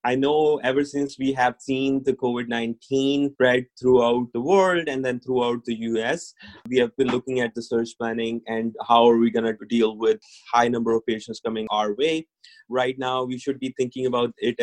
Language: English